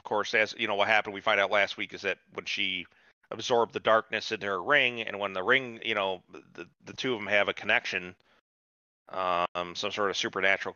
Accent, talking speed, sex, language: American, 230 wpm, male, English